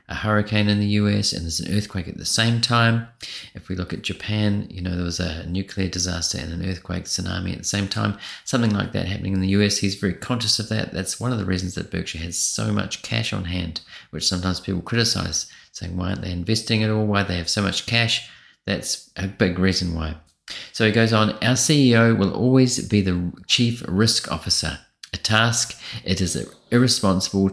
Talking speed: 215 wpm